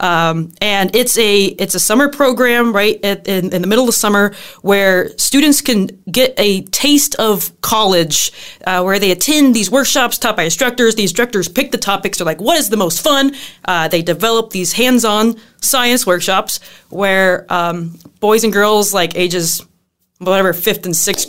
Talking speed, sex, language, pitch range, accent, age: 180 wpm, female, English, 180-235 Hz, American, 20-39